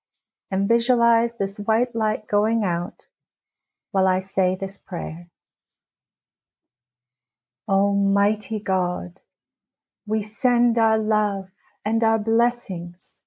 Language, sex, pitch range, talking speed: English, female, 190-240 Hz, 95 wpm